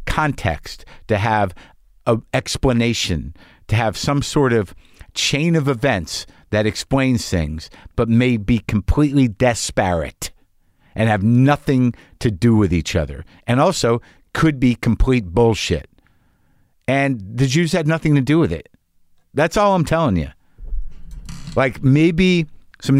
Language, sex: English, male